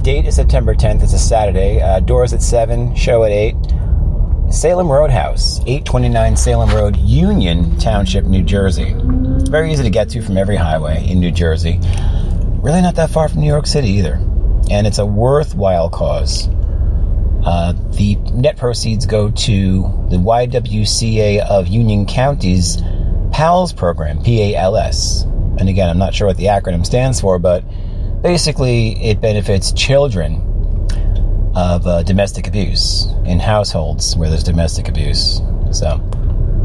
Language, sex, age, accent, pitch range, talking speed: English, male, 30-49, American, 85-110 Hz, 145 wpm